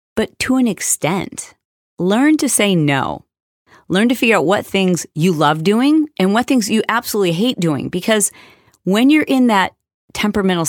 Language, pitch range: English, 155-215 Hz